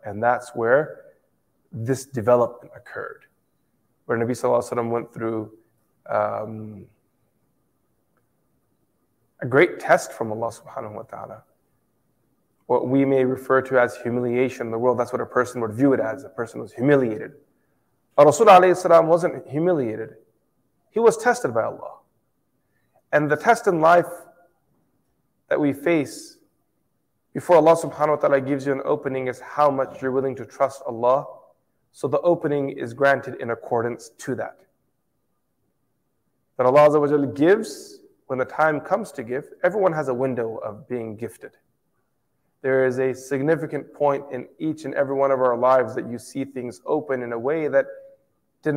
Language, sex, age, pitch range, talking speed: English, male, 20-39, 120-155 Hz, 155 wpm